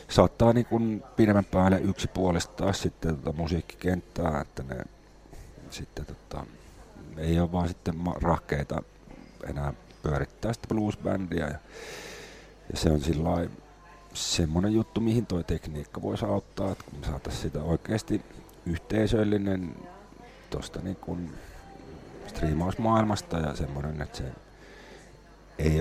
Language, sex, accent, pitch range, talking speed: English, male, Finnish, 80-105 Hz, 115 wpm